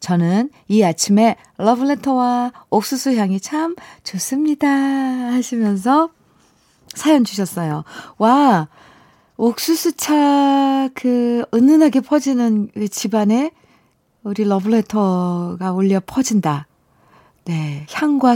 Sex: female